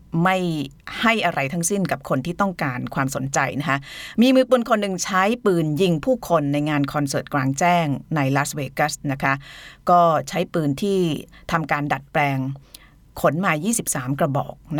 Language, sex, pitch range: Thai, female, 140-185 Hz